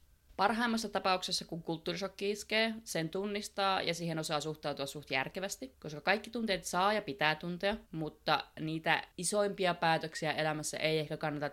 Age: 20-39